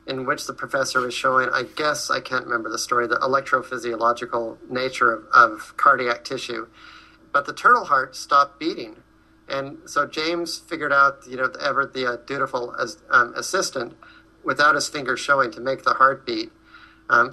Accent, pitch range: American, 125-155 Hz